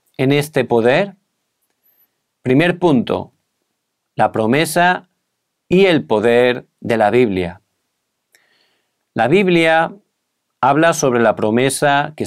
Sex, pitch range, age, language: male, 120-160 Hz, 40-59, Korean